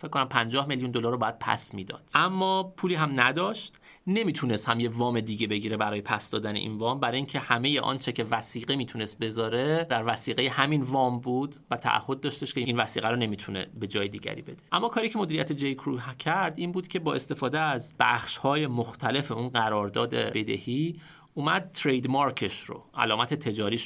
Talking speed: 190 wpm